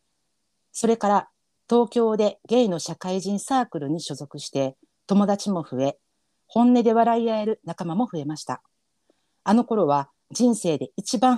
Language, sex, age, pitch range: Japanese, female, 50-69, 150-215 Hz